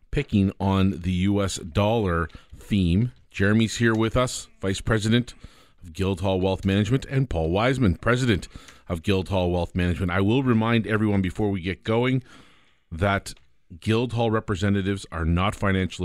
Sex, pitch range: male, 90-110 Hz